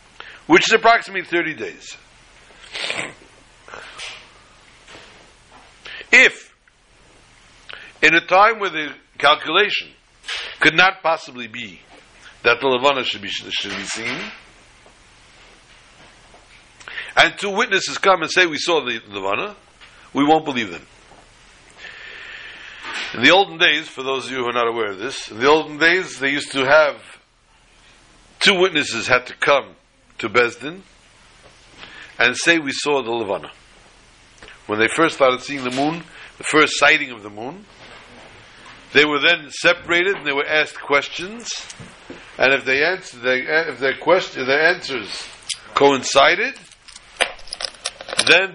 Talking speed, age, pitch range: 130 wpm, 60-79, 130-180 Hz